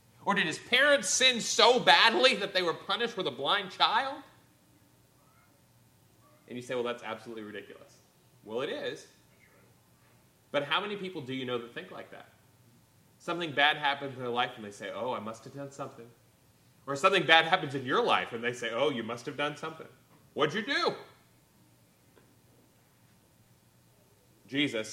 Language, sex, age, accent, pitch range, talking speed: English, male, 30-49, American, 110-145 Hz, 175 wpm